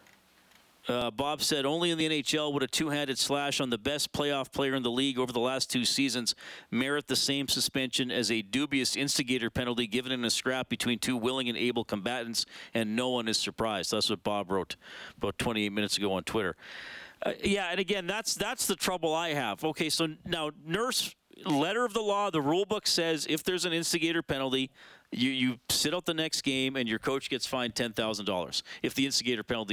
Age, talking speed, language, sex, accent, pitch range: 40-59, 210 wpm, English, male, American, 125-160 Hz